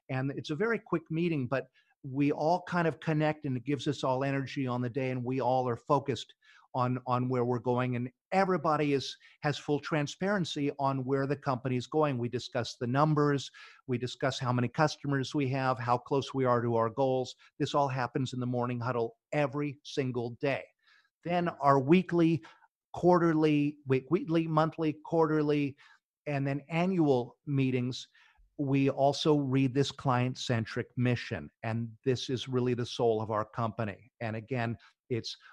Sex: male